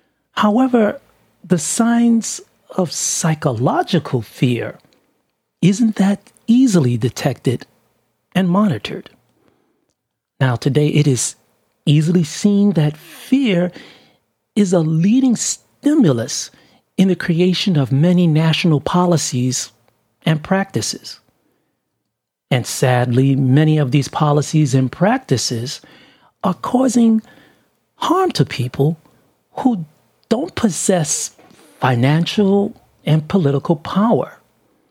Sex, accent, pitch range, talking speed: male, American, 140-195 Hz, 95 wpm